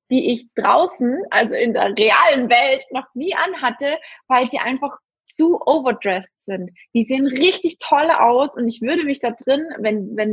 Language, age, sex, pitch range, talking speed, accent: German, 20-39, female, 220-275 Hz, 175 wpm, German